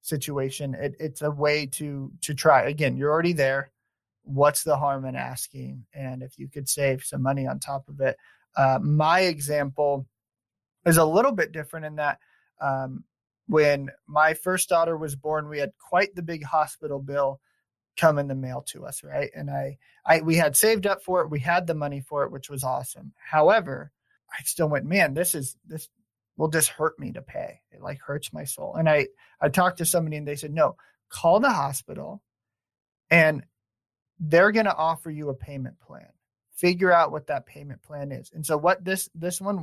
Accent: American